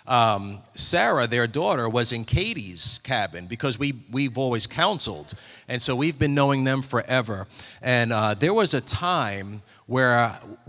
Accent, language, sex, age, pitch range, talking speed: American, English, male, 40-59, 115-140 Hz, 155 wpm